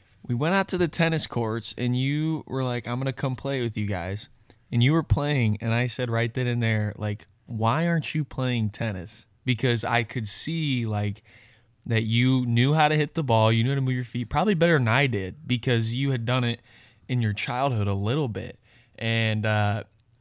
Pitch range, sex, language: 105-130 Hz, male, English